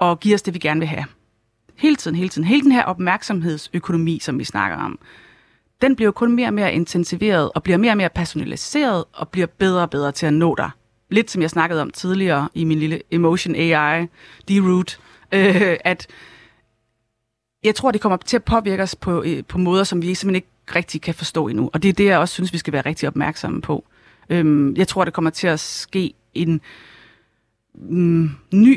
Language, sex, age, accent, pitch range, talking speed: Danish, female, 30-49, native, 155-190 Hz, 205 wpm